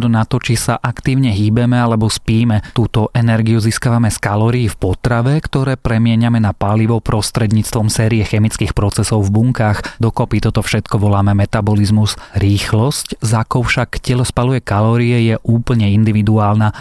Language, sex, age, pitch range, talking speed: Slovak, male, 30-49, 110-125 Hz, 140 wpm